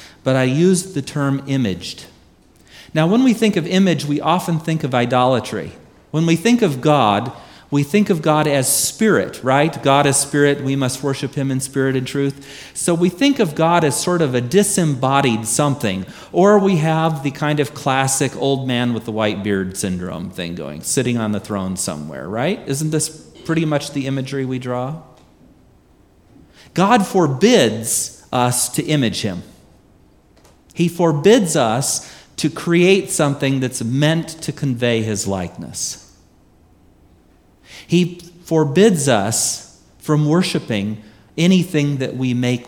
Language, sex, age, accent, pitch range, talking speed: English, male, 40-59, American, 105-155 Hz, 150 wpm